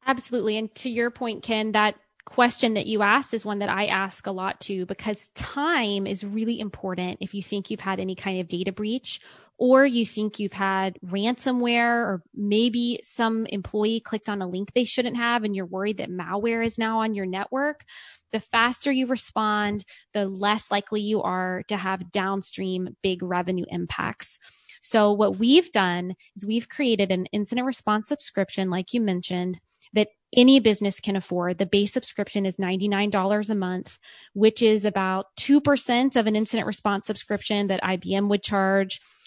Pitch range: 195-235 Hz